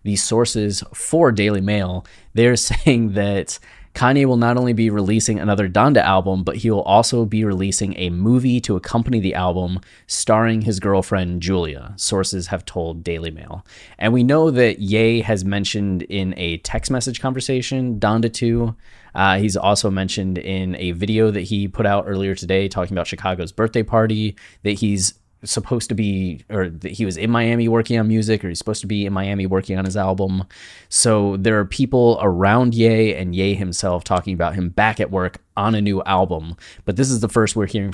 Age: 20-39